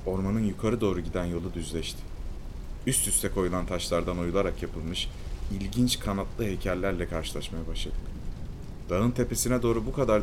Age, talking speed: 30-49, 130 wpm